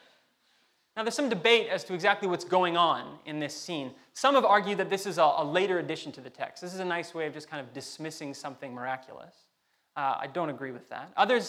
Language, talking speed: English, 235 wpm